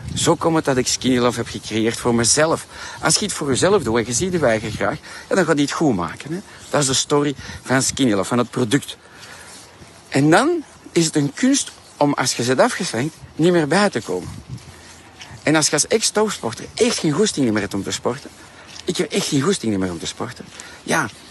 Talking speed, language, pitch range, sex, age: 220 wpm, Dutch, 125-175 Hz, male, 60-79